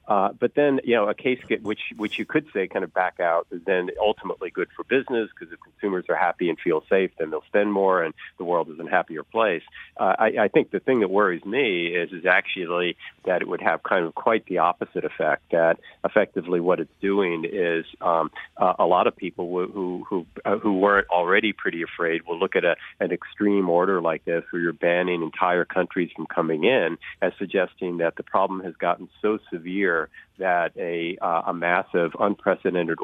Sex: male